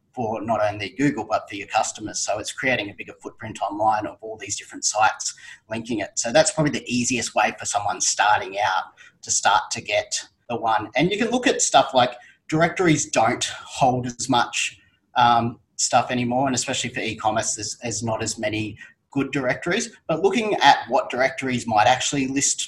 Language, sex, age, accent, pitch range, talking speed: English, male, 30-49, Australian, 110-135 Hz, 190 wpm